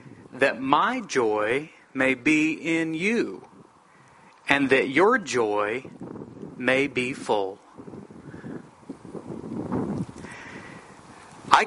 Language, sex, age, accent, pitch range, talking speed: English, male, 40-59, American, 130-155 Hz, 75 wpm